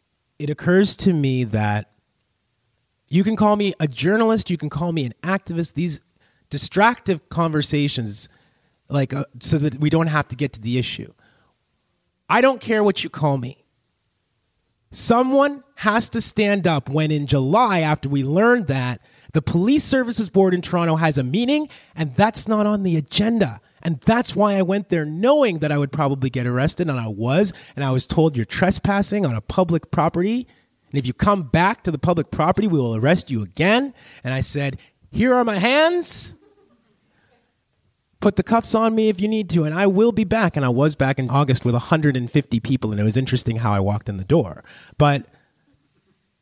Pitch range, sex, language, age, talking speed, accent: 135-200 Hz, male, English, 30-49, 190 wpm, American